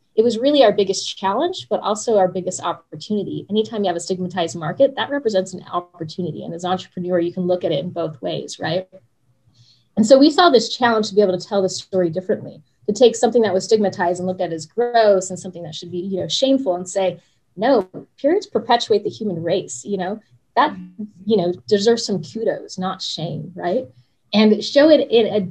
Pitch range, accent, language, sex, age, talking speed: 180-235 Hz, American, English, female, 20-39, 215 wpm